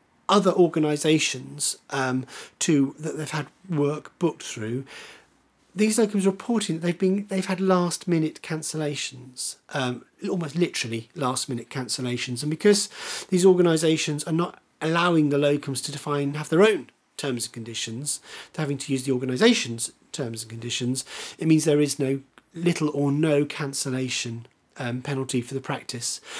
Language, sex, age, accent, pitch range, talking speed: English, male, 40-59, British, 130-165 Hz, 150 wpm